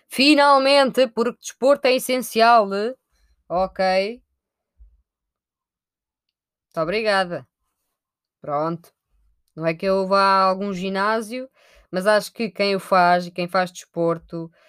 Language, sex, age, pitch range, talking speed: Portuguese, female, 20-39, 170-230 Hz, 110 wpm